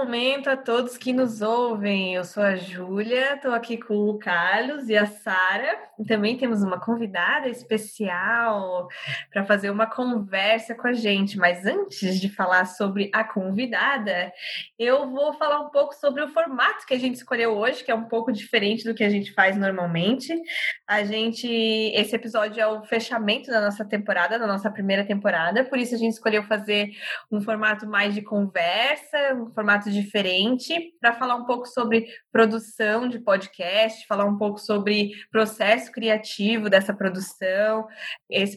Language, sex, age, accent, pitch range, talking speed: Portuguese, female, 20-39, Brazilian, 205-240 Hz, 165 wpm